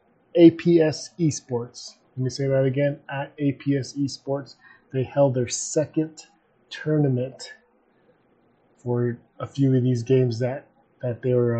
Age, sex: 30-49, male